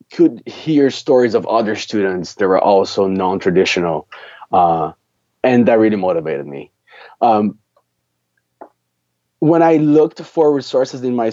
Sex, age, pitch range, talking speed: male, 20-39, 90-125 Hz, 125 wpm